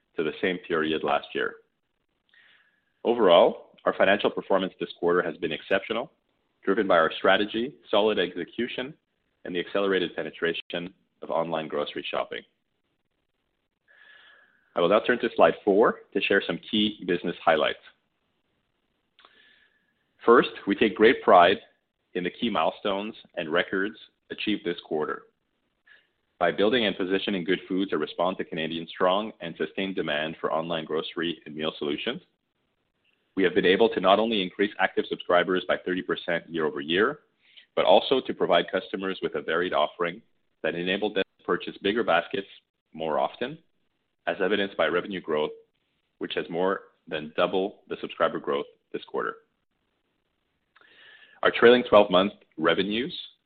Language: English